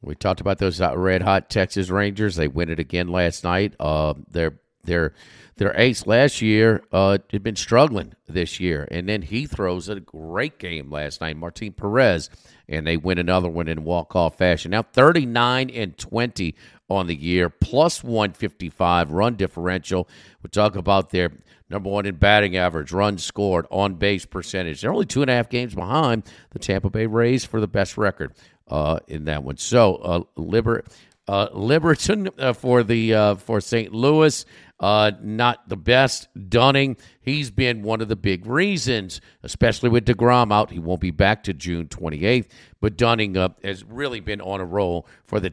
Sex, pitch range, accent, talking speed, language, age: male, 90-115 Hz, American, 180 wpm, English, 50-69